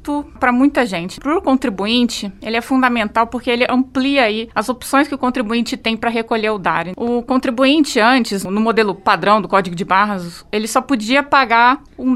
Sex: female